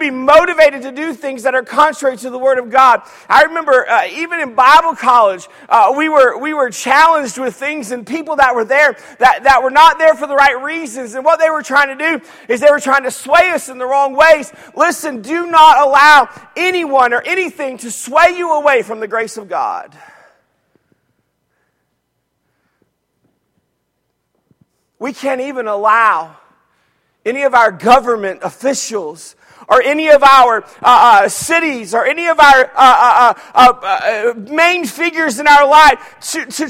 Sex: male